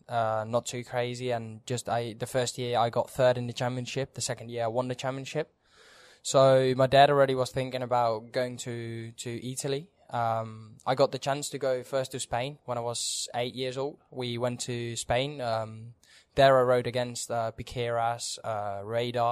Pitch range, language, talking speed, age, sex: 115-130 Hz, English, 195 wpm, 10-29, male